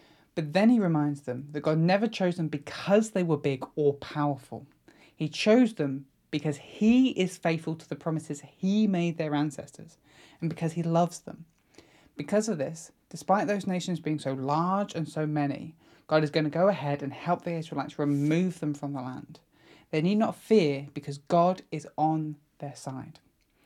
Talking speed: 185 wpm